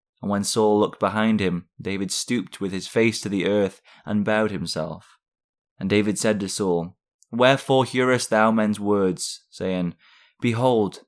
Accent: British